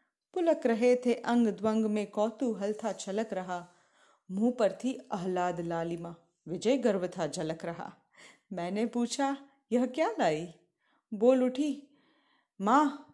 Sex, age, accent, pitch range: female, 30-49, native, 185-245 Hz